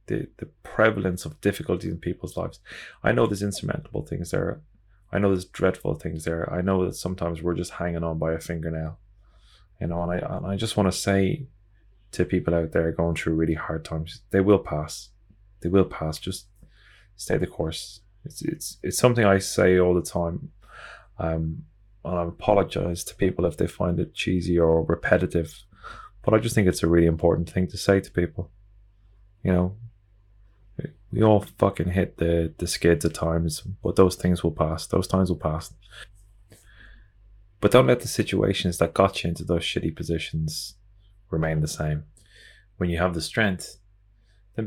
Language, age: English, 20-39